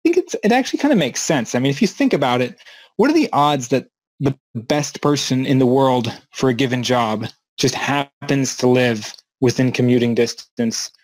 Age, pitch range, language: 20-39, 125-155 Hz, English